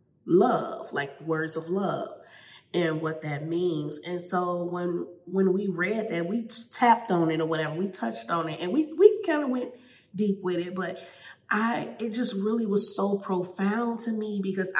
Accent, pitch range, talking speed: American, 160-195 Hz, 185 wpm